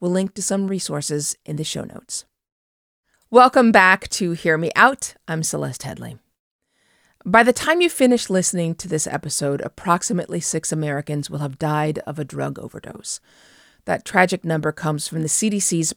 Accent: American